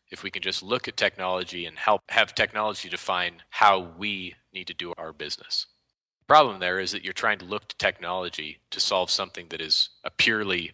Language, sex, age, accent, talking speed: English, male, 30-49, American, 205 wpm